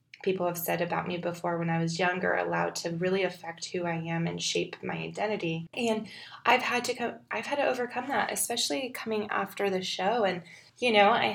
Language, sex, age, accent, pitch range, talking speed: English, female, 20-39, American, 175-205 Hz, 210 wpm